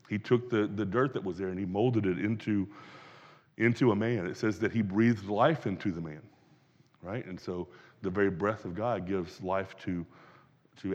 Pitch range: 100-130 Hz